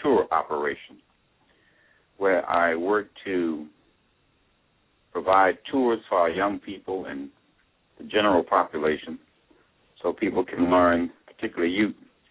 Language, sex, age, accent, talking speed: English, male, 60-79, American, 105 wpm